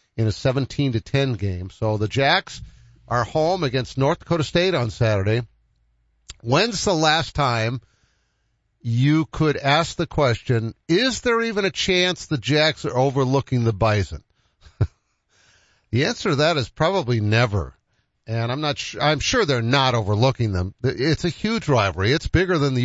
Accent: American